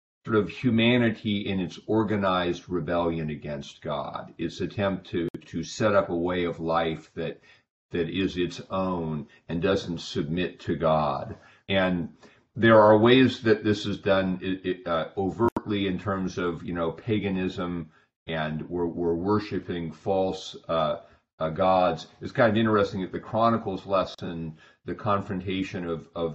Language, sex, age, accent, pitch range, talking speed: English, male, 40-59, American, 80-95 Hz, 155 wpm